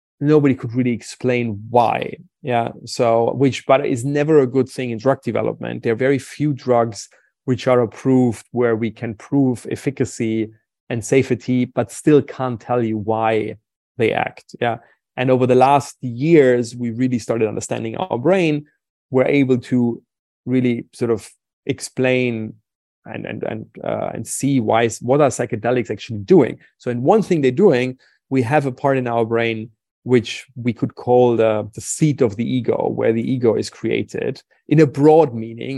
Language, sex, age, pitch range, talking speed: English, male, 30-49, 115-135 Hz, 175 wpm